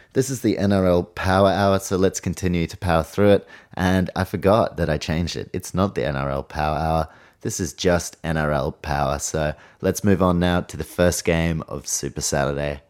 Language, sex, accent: English, male, Australian